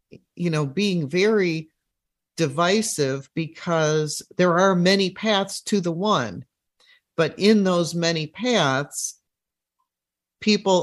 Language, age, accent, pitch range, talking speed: English, 50-69, American, 150-200 Hz, 105 wpm